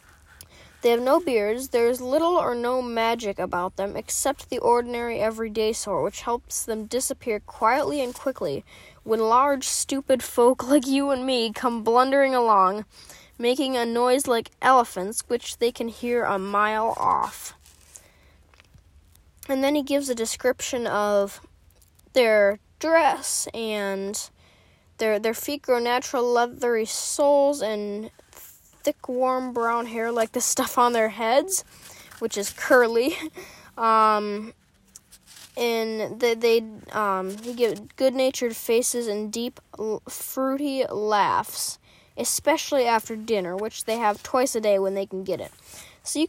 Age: 10-29